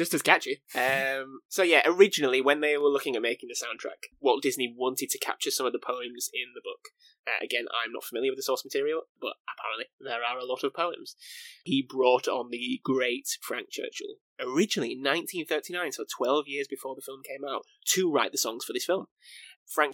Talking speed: 210 wpm